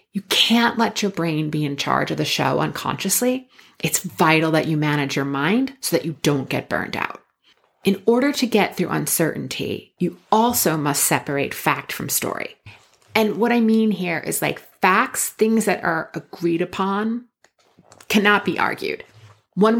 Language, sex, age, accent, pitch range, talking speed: English, female, 30-49, American, 160-230 Hz, 170 wpm